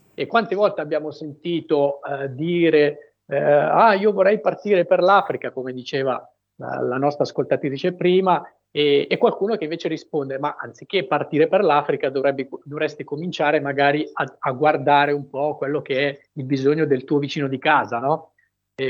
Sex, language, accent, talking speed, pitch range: male, Italian, native, 170 wpm, 140-165 Hz